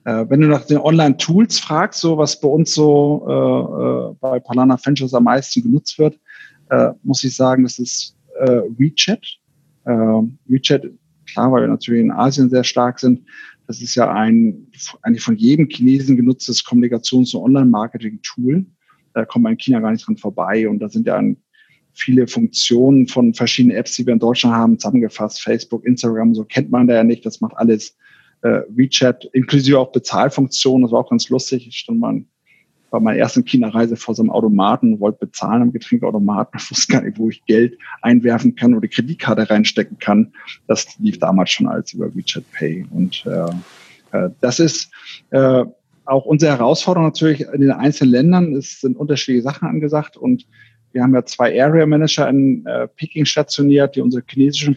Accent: German